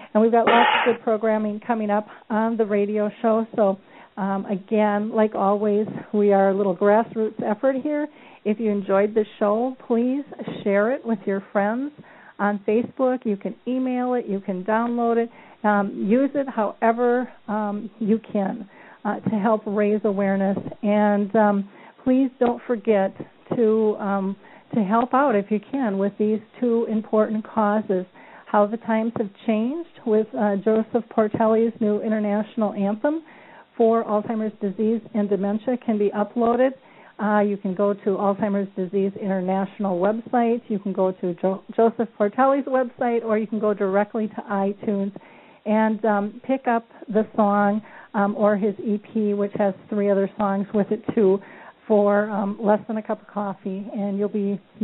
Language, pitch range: English, 205-230 Hz